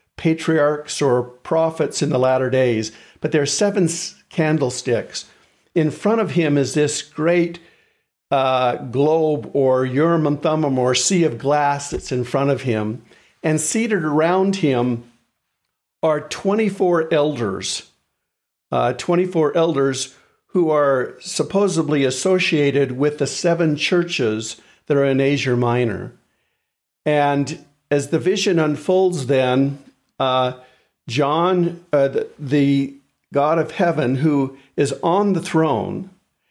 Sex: male